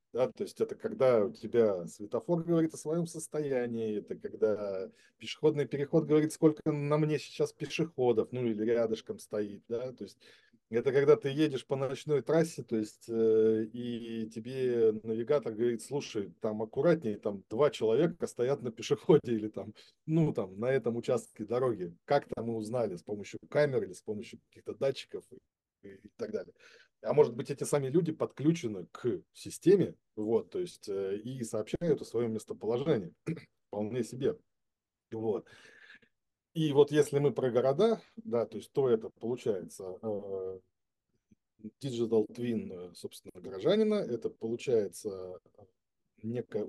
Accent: native